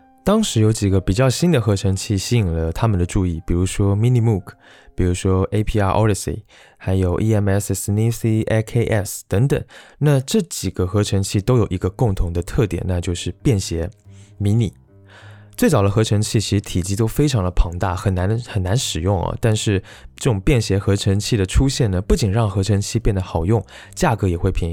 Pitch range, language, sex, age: 95-120 Hz, Chinese, male, 20-39